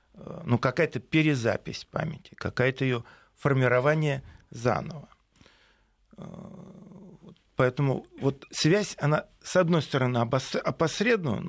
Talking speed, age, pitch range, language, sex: 90 wpm, 40-59, 115-160 Hz, Russian, male